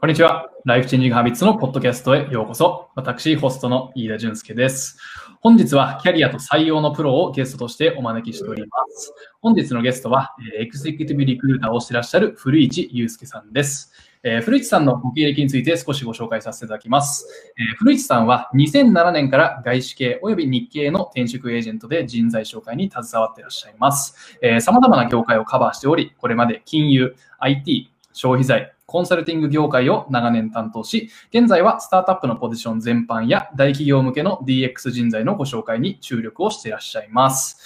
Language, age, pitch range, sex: Japanese, 20-39, 120-150 Hz, male